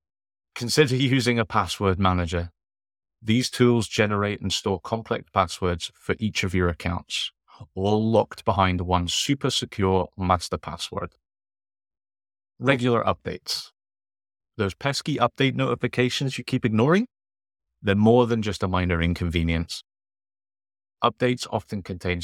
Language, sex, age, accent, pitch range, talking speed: English, male, 30-49, British, 90-120 Hz, 120 wpm